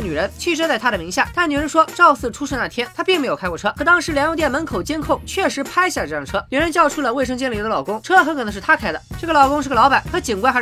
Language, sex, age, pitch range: Chinese, female, 20-39, 245-325 Hz